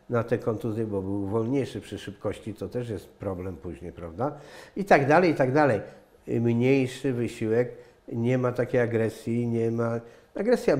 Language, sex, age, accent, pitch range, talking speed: English, male, 50-69, Polish, 115-145 Hz, 160 wpm